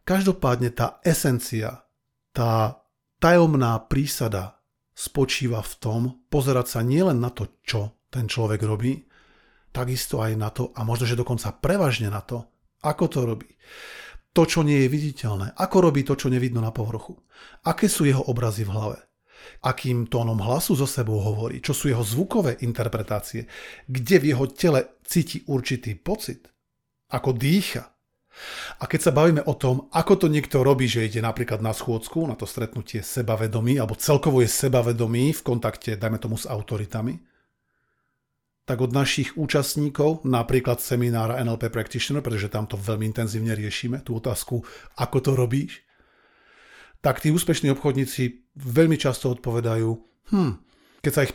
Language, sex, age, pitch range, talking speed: Slovak, male, 40-59, 115-145 Hz, 150 wpm